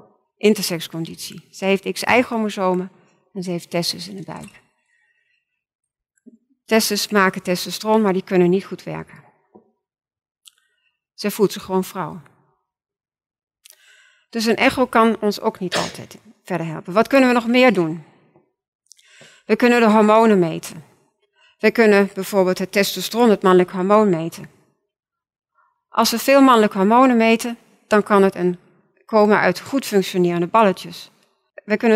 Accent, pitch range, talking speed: Dutch, 185-230 Hz, 135 wpm